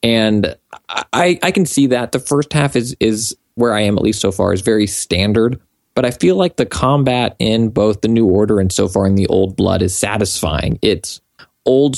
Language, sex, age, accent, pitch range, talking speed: English, male, 20-39, American, 95-115 Hz, 215 wpm